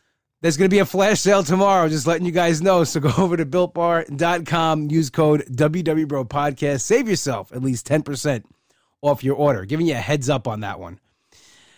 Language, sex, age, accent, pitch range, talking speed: English, male, 20-39, American, 125-155 Hz, 190 wpm